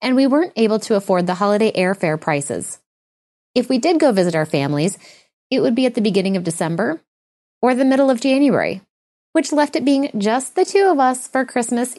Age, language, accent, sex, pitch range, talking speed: 20-39, English, American, female, 200-275 Hz, 205 wpm